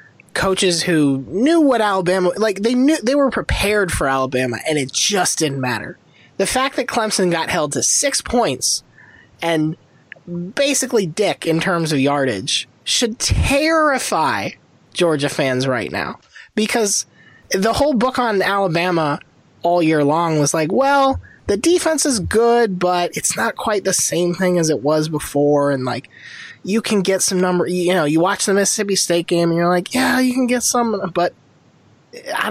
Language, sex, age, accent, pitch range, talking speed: English, male, 20-39, American, 150-215 Hz, 170 wpm